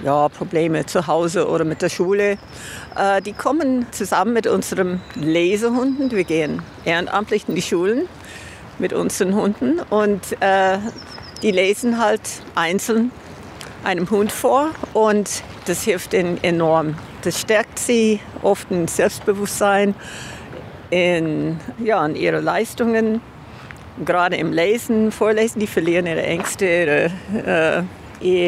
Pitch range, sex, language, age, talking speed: 175-220 Hz, female, German, 50-69, 125 wpm